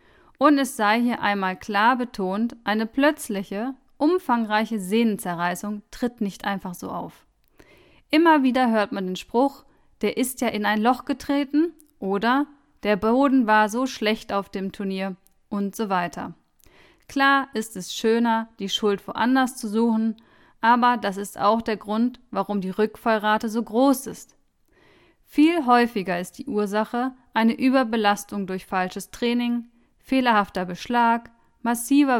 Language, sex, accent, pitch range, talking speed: German, female, German, 205-255 Hz, 140 wpm